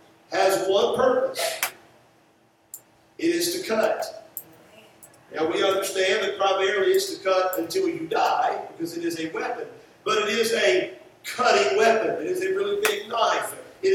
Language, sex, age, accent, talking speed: English, male, 50-69, American, 155 wpm